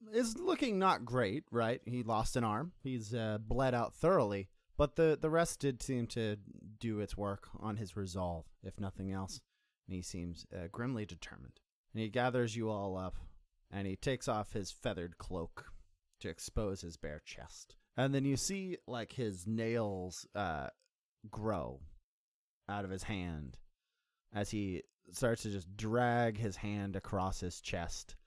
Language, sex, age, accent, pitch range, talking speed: English, male, 30-49, American, 90-110 Hz, 165 wpm